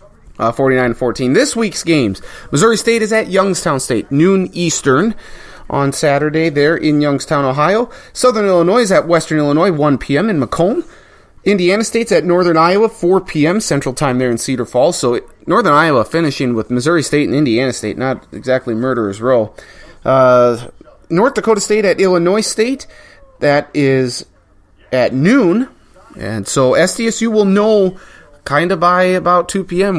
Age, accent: 30-49, American